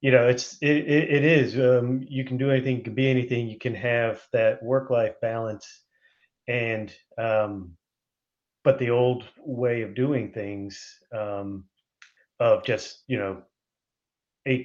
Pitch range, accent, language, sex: 105-130 Hz, American, English, male